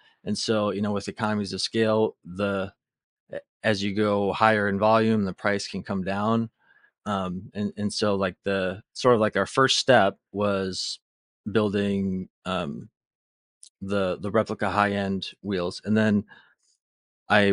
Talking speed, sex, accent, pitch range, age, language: 145 wpm, male, American, 95-110 Hz, 30-49, English